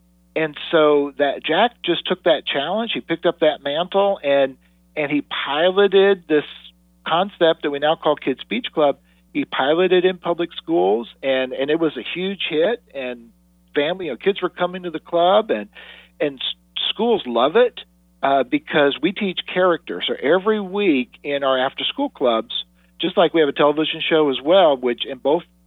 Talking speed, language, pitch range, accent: 180 wpm, English, 130-175 Hz, American